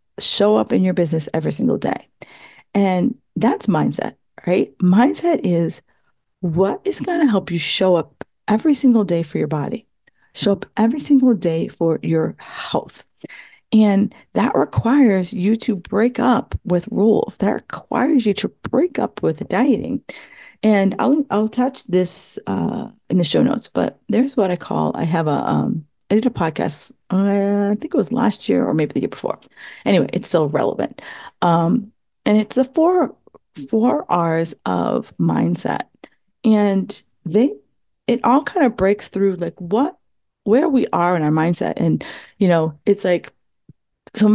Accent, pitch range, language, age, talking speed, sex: American, 180-245 Hz, English, 40-59, 165 wpm, female